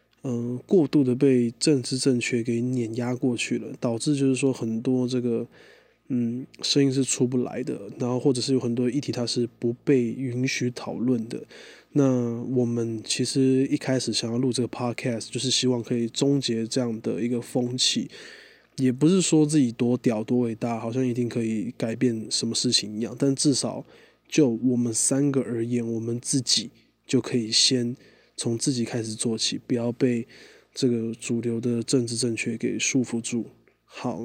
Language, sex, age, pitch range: Chinese, male, 20-39, 120-135 Hz